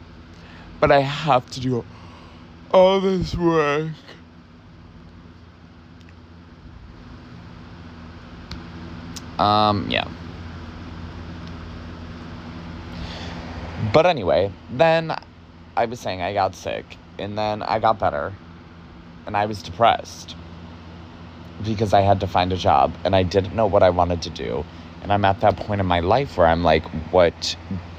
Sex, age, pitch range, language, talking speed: male, 20-39, 85-100 Hz, English, 120 wpm